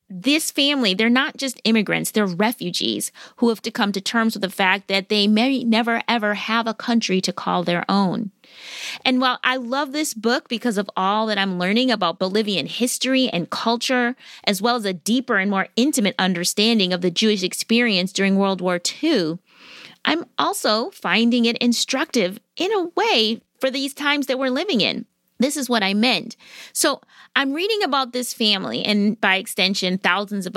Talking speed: 185 wpm